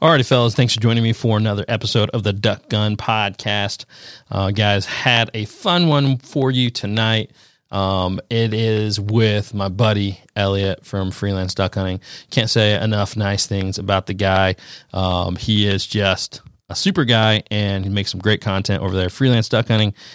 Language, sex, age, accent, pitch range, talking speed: English, male, 30-49, American, 95-115 Hz, 180 wpm